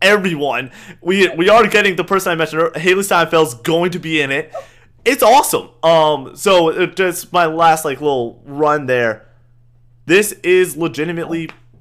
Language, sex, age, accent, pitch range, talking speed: English, male, 20-39, American, 130-180 Hz, 150 wpm